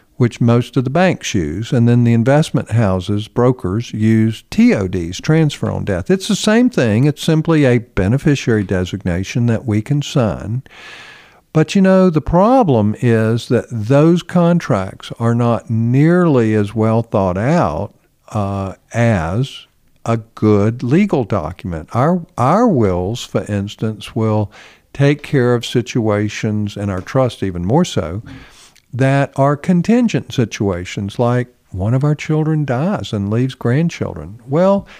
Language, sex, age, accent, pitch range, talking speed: English, male, 50-69, American, 110-155 Hz, 140 wpm